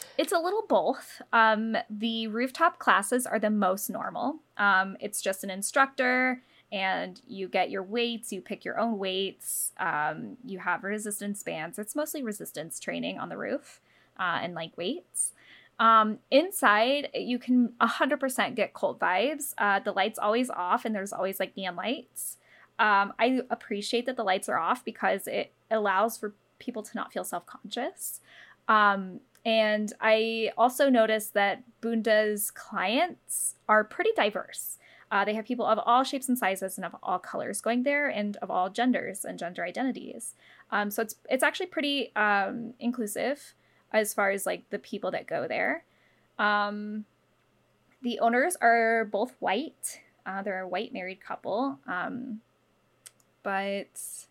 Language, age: English, 10-29